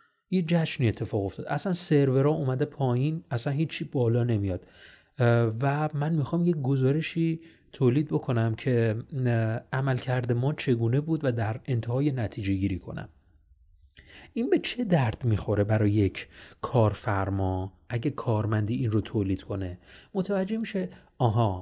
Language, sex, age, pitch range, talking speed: Persian, male, 30-49, 110-155 Hz, 135 wpm